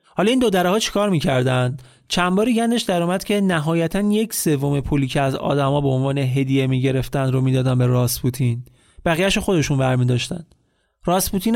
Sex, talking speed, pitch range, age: male, 155 wpm, 140-200 Hz, 30-49